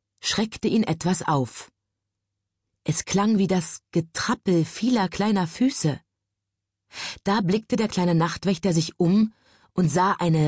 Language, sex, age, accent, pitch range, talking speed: German, female, 30-49, German, 120-200 Hz, 125 wpm